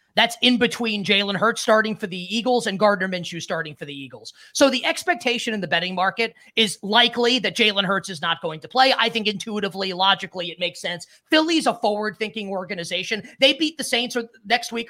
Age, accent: 30-49, American